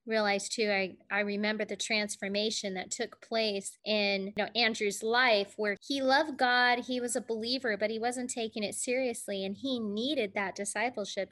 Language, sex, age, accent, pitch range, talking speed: English, female, 20-39, American, 200-235 Hz, 180 wpm